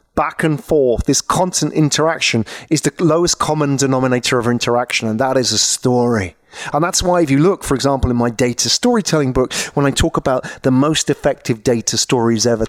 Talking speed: 195 wpm